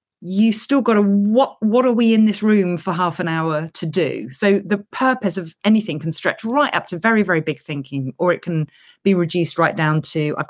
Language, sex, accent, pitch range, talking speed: English, female, British, 150-215 Hz, 230 wpm